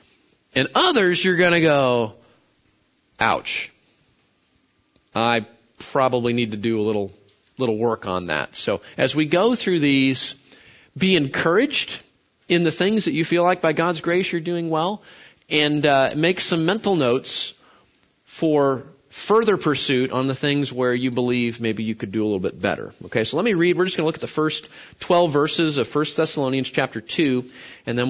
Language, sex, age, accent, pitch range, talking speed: English, male, 40-59, American, 135-180 Hz, 180 wpm